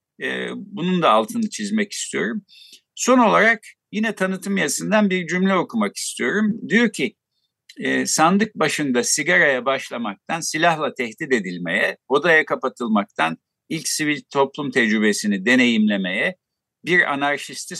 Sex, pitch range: male, 145-210 Hz